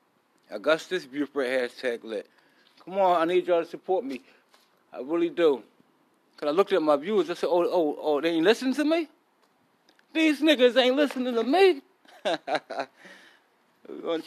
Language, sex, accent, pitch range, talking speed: English, male, American, 155-210 Hz, 165 wpm